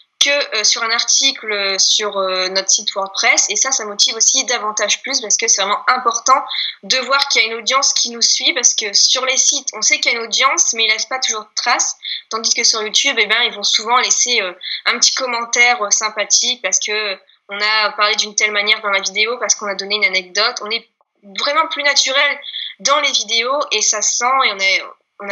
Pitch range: 205-255 Hz